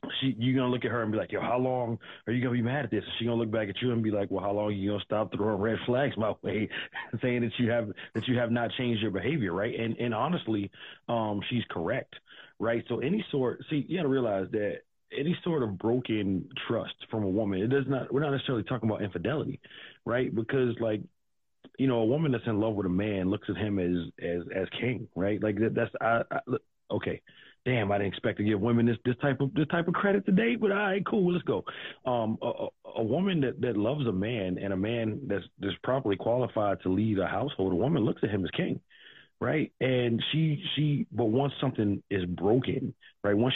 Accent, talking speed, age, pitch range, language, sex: American, 235 wpm, 30-49, 100-125 Hz, English, male